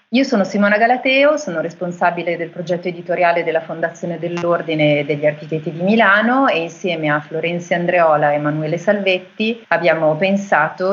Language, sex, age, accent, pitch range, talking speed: Italian, female, 30-49, native, 155-195 Hz, 145 wpm